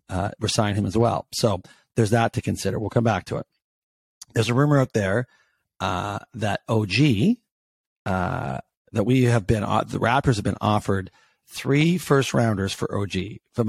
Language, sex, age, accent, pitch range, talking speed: English, male, 40-59, American, 95-120 Hz, 175 wpm